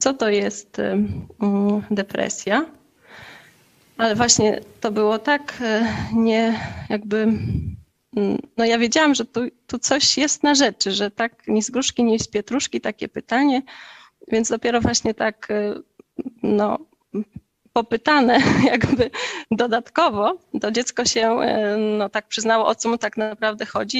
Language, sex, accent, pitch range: Polish, female, native, 210-235 Hz